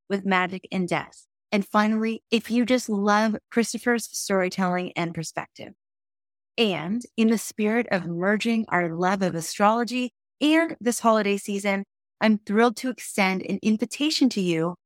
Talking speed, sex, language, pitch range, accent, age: 145 wpm, female, English, 180-235 Hz, American, 20-39